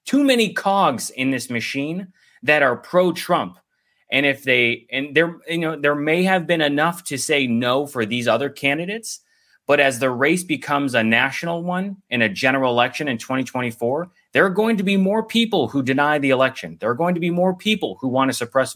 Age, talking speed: 30-49, 210 wpm